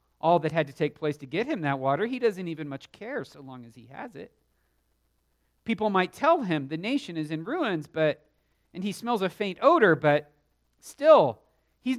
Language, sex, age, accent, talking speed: English, male, 40-59, American, 205 wpm